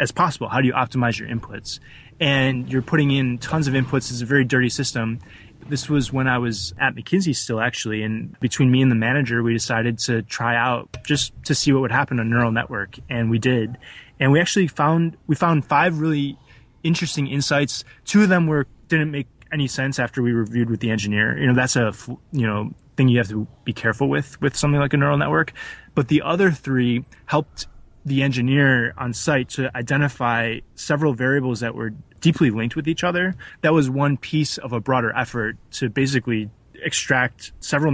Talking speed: 200 wpm